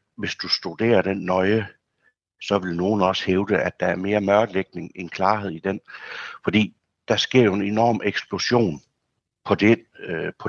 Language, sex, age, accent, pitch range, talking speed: Danish, male, 60-79, native, 95-120 Hz, 160 wpm